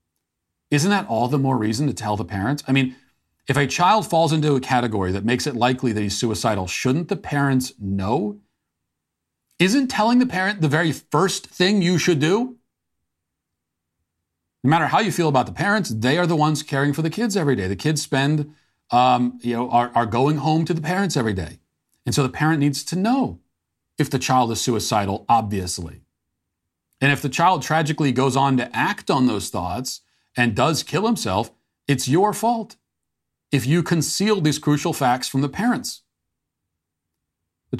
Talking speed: 185 wpm